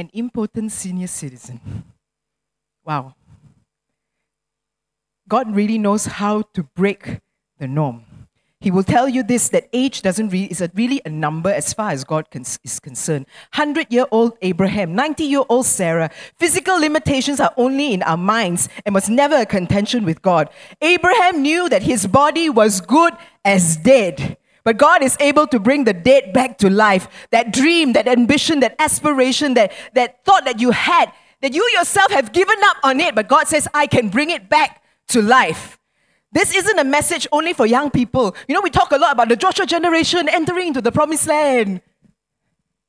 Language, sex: English, female